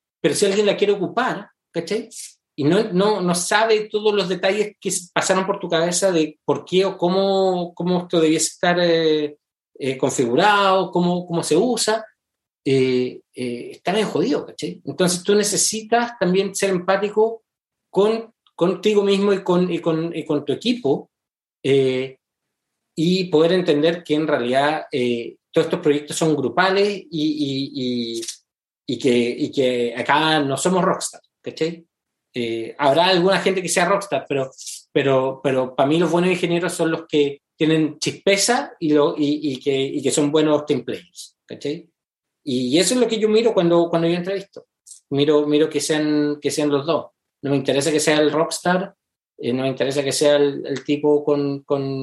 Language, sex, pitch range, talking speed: English, male, 145-190 Hz, 175 wpm